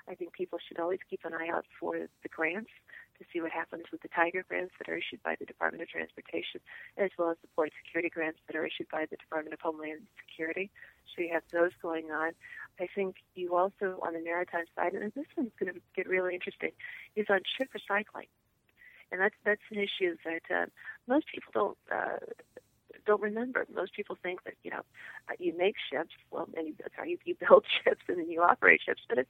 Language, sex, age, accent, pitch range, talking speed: English, female, 40-59, American, 170-215 Hz, 215 wpm